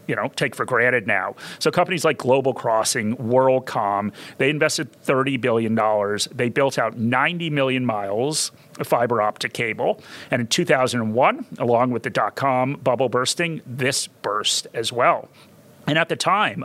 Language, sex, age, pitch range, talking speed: English, male, 40-59, 120-155 Hz, 155 wpm